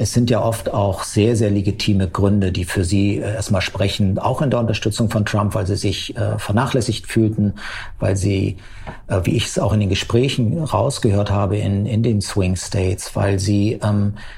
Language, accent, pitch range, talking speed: German, German, 100-115 Hz, 190 wpm